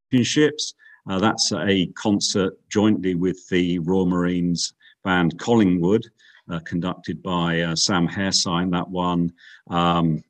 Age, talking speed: 50-69, 115 wpm